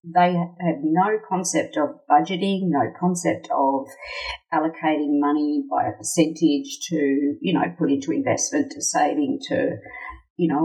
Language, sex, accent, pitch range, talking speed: English, female, Australian, 150-215 Hz, 140 wpm